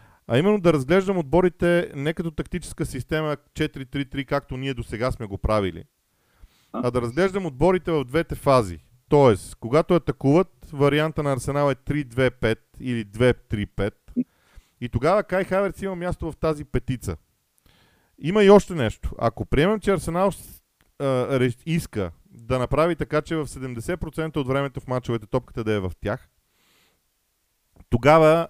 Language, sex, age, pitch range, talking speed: Bulgarian, male, 40-59, 125-165 Hz, 145 wpm